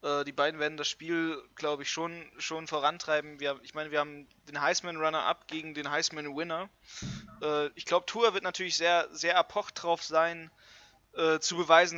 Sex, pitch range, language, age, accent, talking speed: male, 150-175 Hz, German, 20-39, German, 160 wpm